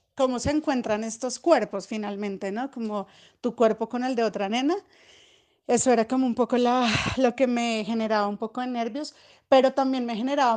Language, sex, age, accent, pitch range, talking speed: Spanish, female, 30-49, Colombian, 225-275 Hz, 185 wpm